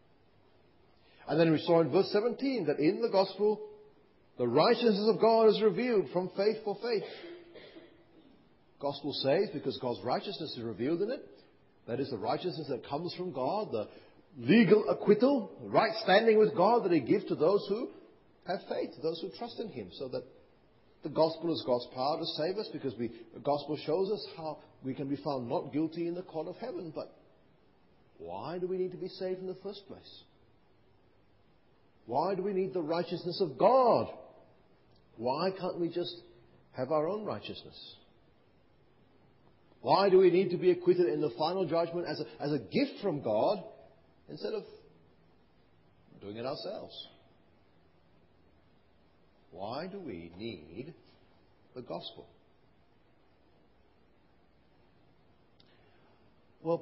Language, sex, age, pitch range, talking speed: English, male, 40-59, 135-205 Hz, 150 wpm